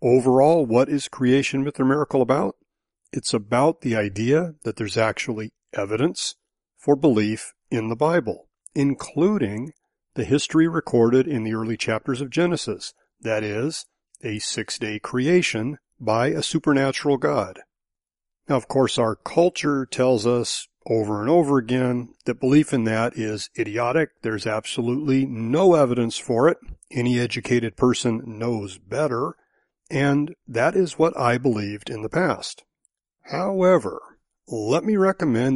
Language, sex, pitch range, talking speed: English, male, 115-155 Hz, 135 wpm